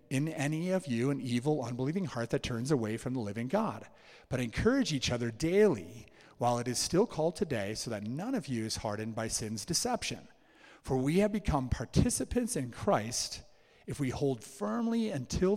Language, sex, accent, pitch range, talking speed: English, male, American, 115-170 Hz, 185 wpm